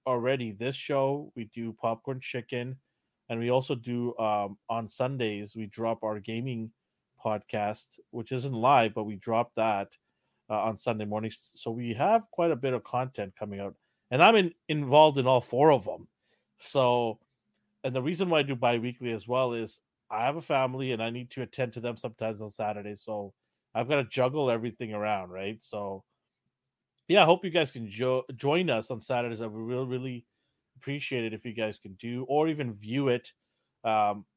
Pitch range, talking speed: 110-130 Hz, 190 wpm